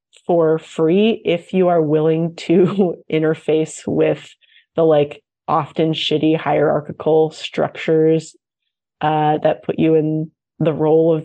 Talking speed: 125 wpm